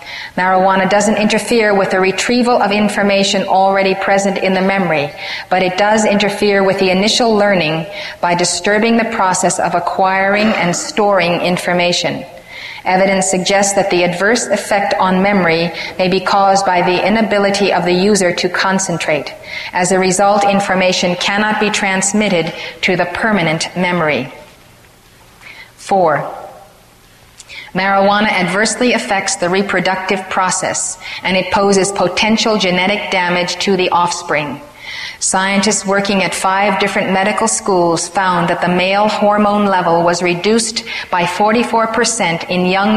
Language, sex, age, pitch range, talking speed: English, female, 30-49, 180-205 Hz, 135 wpm